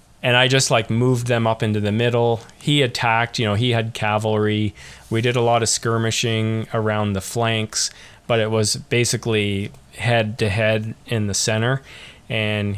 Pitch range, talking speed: 105-120 Hz, 175 wpm